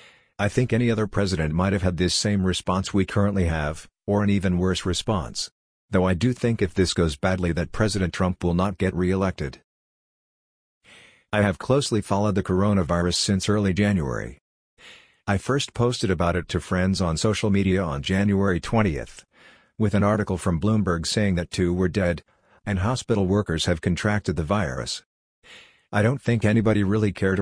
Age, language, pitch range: 50-69, English, 90-105 Hz